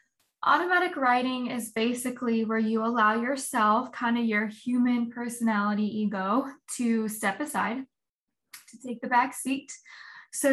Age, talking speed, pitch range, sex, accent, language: 10-29, 130 wpm, 215-255 Hz, female, American, English